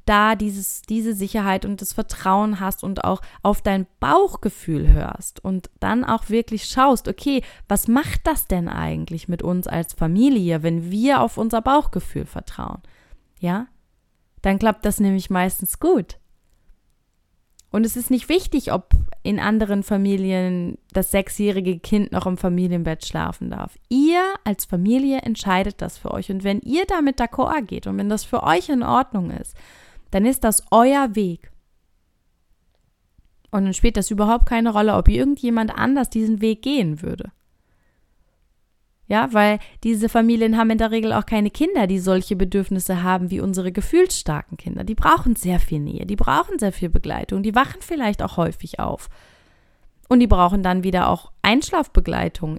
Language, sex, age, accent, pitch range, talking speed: German, female, 20-39, German, 190-245 Hz, 160 wpm